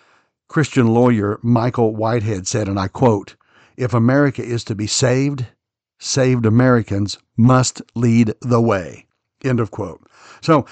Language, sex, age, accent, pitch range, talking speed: English, male, 60-79, American, 110-130 Hz, 135 wpm